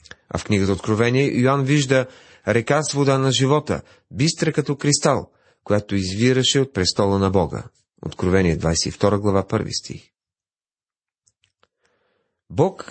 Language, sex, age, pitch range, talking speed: Bulgarian, male, 40-59, 100-145 Hz, 120 wpm